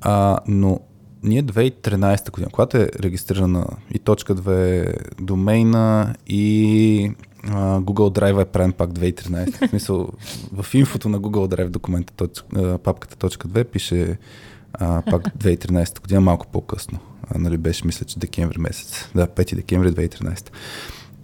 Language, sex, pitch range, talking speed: Bulgarian, male, 95-115 Hz, 135 wpm